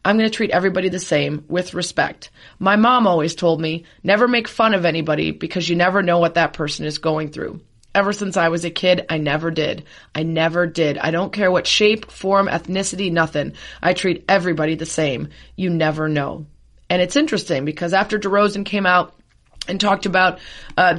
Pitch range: 170-205 Hz